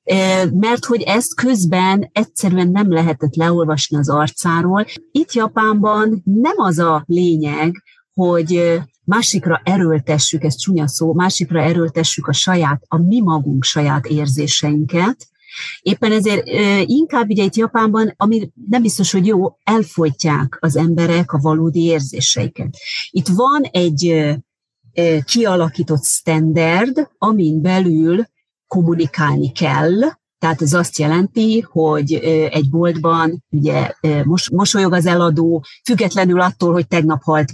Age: 40-59